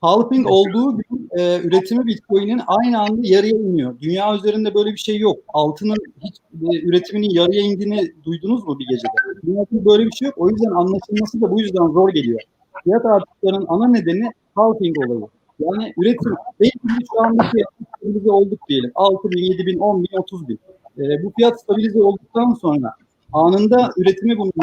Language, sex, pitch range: Turkish, male, 185-235 Hz